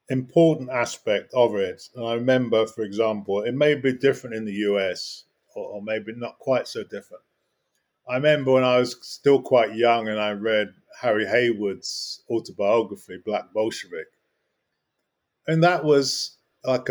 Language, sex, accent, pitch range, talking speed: English, male, British, 115-140 Hz, 150 wpm